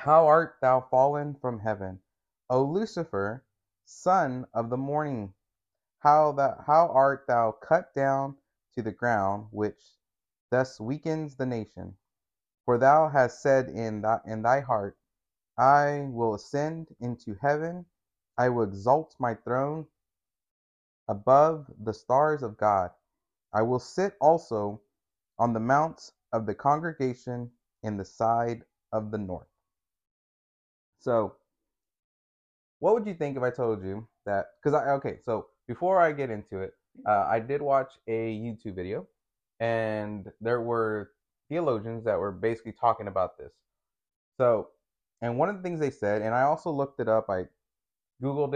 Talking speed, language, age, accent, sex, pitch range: 145 wpm, English, 30-49, American, male, 105-140 Hz